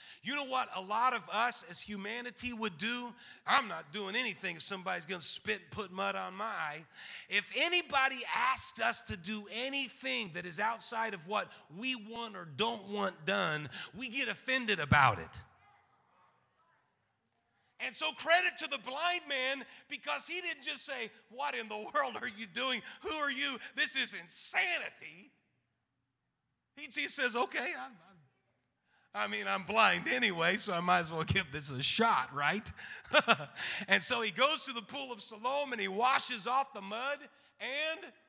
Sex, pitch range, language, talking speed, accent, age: male, 200-275 Hz, English, 175 wpm, American, 40-59